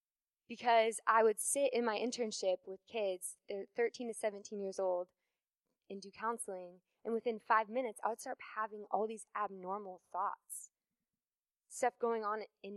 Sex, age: female, 20-39